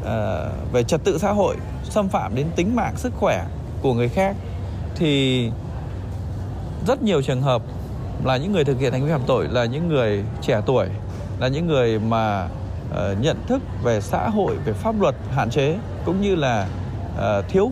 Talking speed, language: 175 wpm, Vietnamese